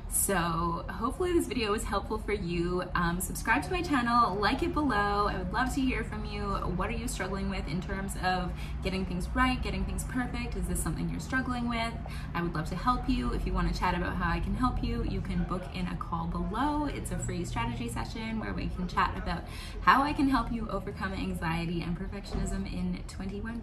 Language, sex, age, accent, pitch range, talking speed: English, female, 20-39, American, 175-225 Hz, 220 wpm